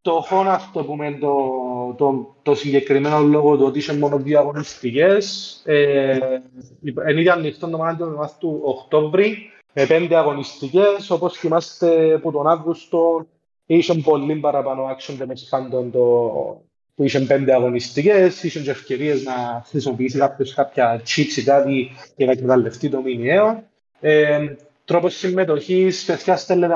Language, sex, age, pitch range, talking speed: Greek, male, 30-49, 135-165 Hz, 135 wpm